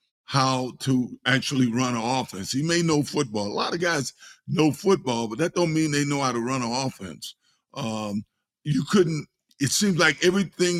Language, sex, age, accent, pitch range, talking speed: English, male, 50-69, American, 125-160 Hz, 190 wpm